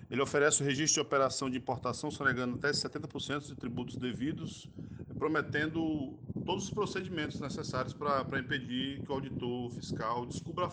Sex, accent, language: male, Brazilian, Portuguese